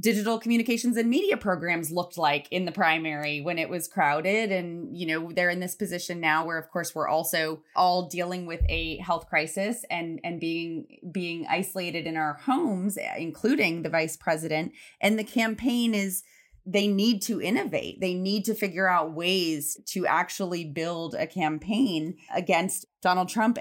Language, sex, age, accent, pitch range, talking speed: English, female, 20-39, American, 160-195 Hz, 170 wpm